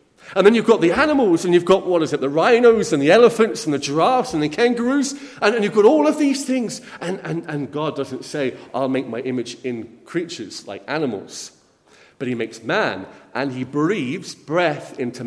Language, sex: English, male